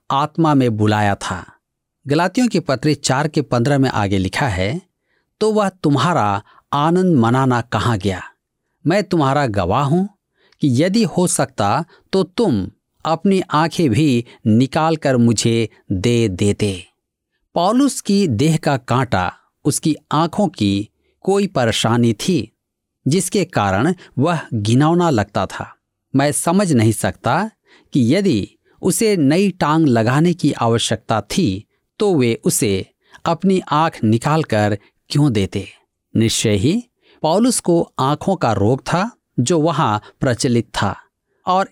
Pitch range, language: 115-175 Hz, Hindi